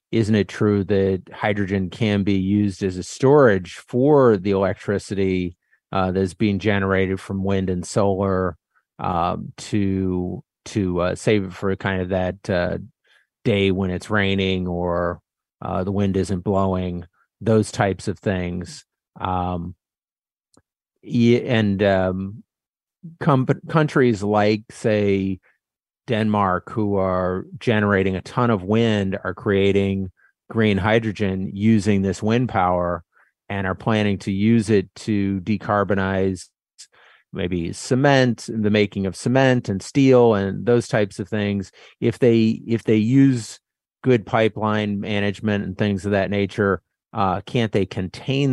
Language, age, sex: English, 30-49, male